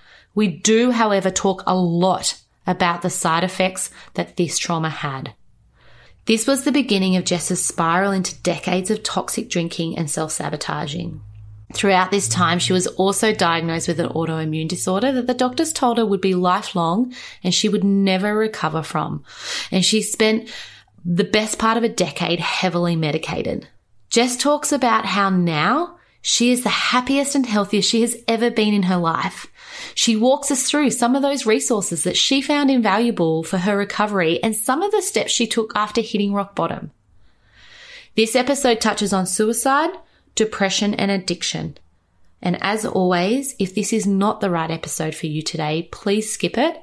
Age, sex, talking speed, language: 30-49, female, 170 wpm, English